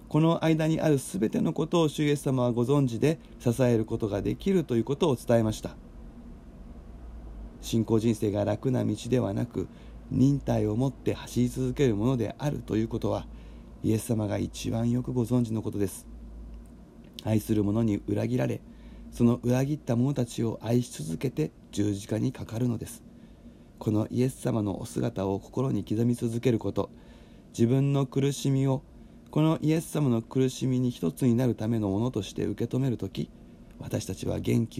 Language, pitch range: Japanese, 110-135 Hz